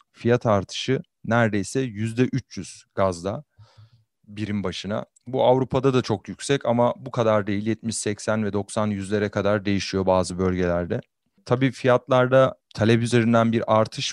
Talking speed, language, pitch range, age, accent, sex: 125 wpm, Turkish, 100-120 Hz, 40-59, native, male